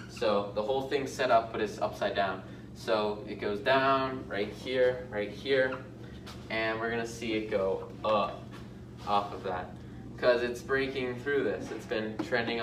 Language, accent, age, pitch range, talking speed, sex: English, American, 20-39, 110-130 Hz, 170 wpm, male